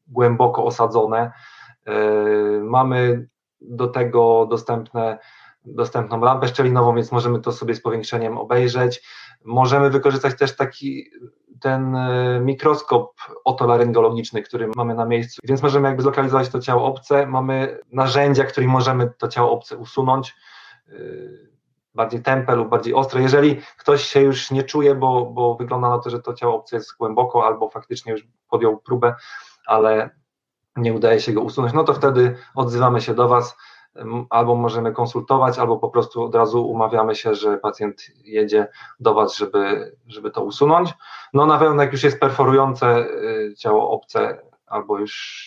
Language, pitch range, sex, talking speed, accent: Polish, 115-135 Hz, male, 150 wpm, native